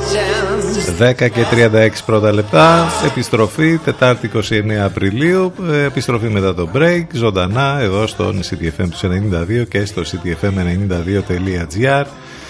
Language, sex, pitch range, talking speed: Greek, male, 85-125 Hz, 90 wpm